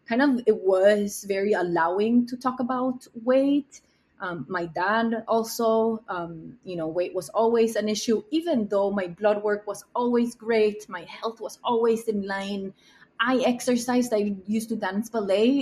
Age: 20-39